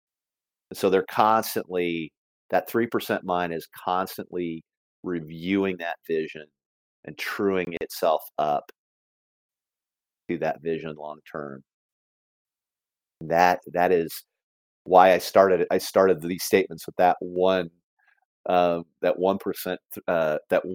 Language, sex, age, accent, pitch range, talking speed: English, male, 40-59, American, 80-105 Hz, 115 wpm